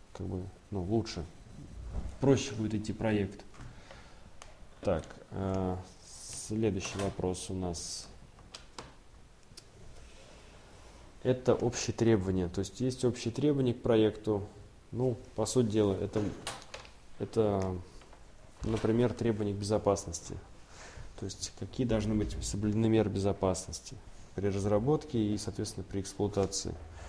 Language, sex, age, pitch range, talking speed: Russian, male, 20-39, 95-115 Hz, 105 wpm